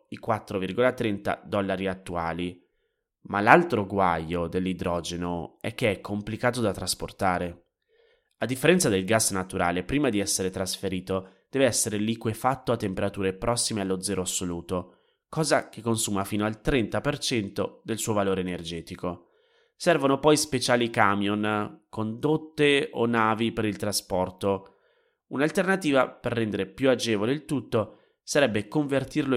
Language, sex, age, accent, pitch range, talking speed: Italian, male, 20-39, native, 95-130 Hz, 125 wpm